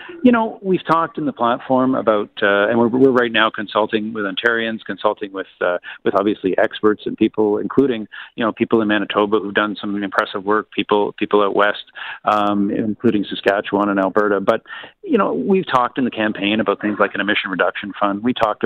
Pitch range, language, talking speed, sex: 100-120 Hz, English, 200 wpm, male